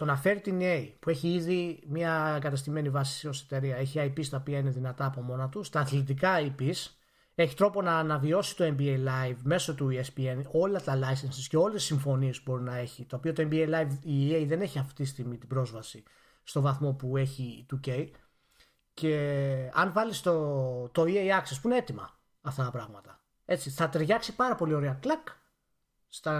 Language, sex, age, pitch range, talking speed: Greek, male, 30-49, 135-170 Hz, 195 wpm